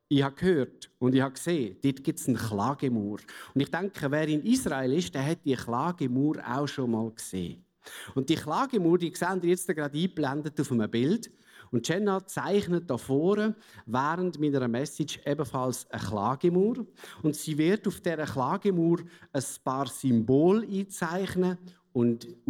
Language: German